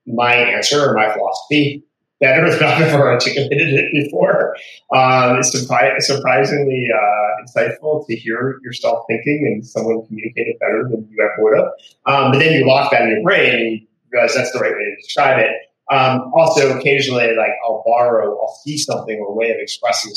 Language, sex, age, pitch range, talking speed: English, male, 30-49, 115-145 Hz, 195 wpm